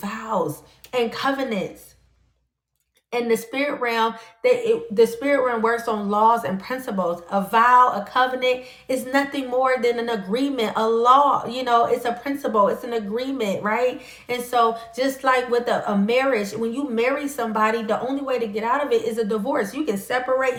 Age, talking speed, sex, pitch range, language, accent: 30-49, 185 wpm, female, 215-240 Hz, English, American